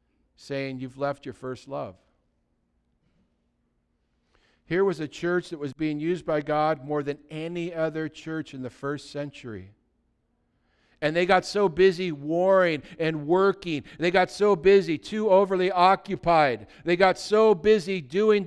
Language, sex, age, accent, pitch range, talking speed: English, male, 50-69, American, 160-210 Hz, 145 wpm